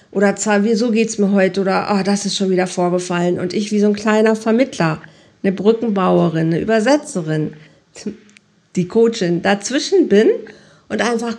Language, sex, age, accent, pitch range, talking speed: German, female, 50-69, German, 175-235 Hz, 165 wpm